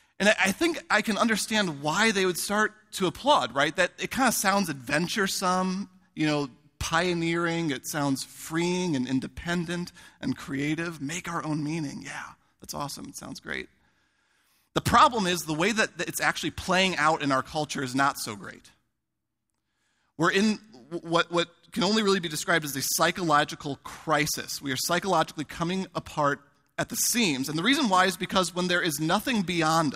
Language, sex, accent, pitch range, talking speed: English, male, American, 150-195 Hz, 175 wpm